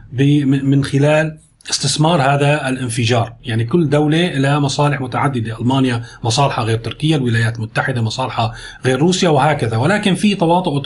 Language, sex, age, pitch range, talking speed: Arabic, male, 30-49, 125-160 Hz, 135 wpm